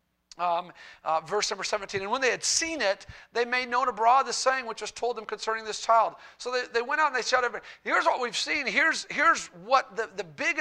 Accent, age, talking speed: American, 40-59, 240 wpm